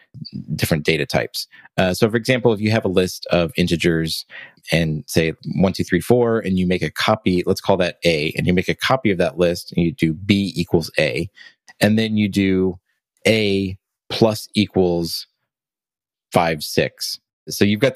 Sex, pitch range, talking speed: male, 85-105 Hz, 185 wpm